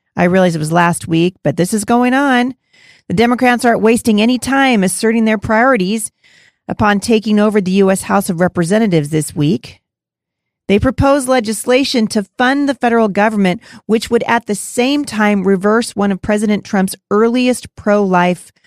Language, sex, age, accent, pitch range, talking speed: English, female, 40-59, American, 175-225 Hz, 165 wpm